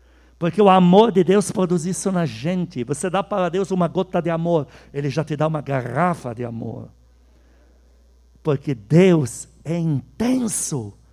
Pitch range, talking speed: 120-185 Hz, 155 wpm